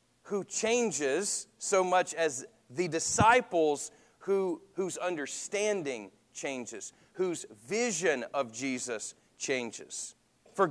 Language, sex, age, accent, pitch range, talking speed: English, male, 40-59, American, 125-190 Hz, 95 wpm